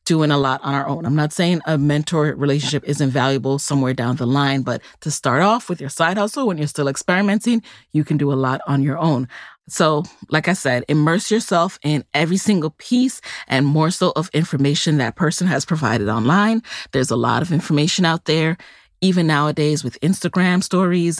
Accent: American